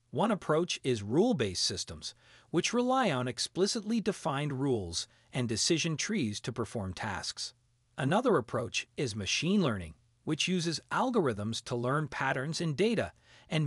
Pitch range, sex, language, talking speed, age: 120-185 Hz, male, English, 135 wpm, 40-59